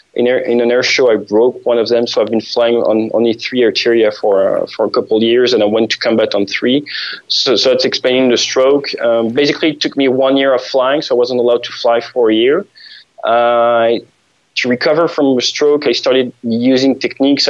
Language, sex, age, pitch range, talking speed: English, male, 20-39, 115-135 Hz, 220 wpm